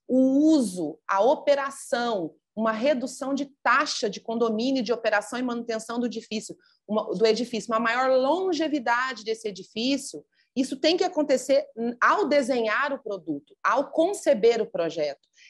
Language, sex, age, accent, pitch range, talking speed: Portuguese, female, 30-49, Brazilian, 195-260 Hz, 130 wpm